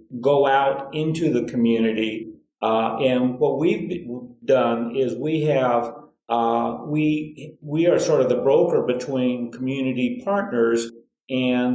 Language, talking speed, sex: English, 130 wpm, male